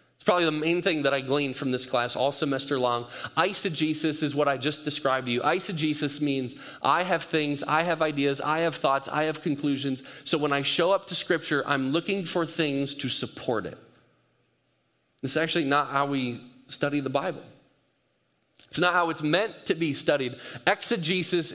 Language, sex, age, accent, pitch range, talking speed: English, male, 30-49, American, 135-175 Hz, 185 wpm